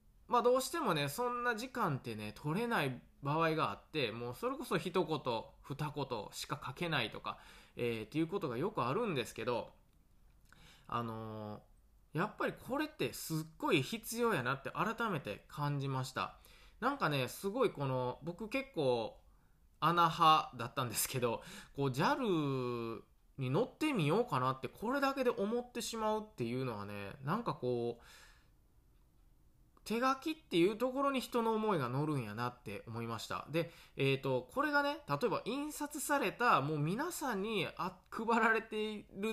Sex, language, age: male, Japanese, 20-39